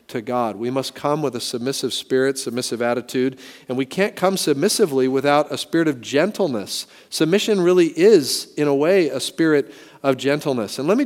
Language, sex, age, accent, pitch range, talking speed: English, male, 40-59, American, 135-180 Hz, 185 wpm